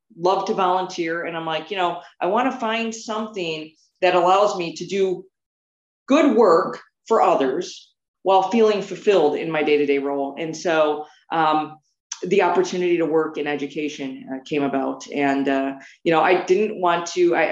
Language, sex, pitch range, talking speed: English, female, 145-180 Hz, 180 wpm